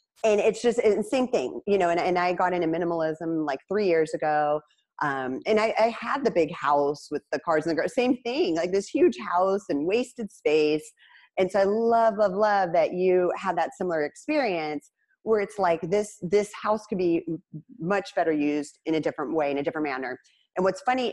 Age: 30-49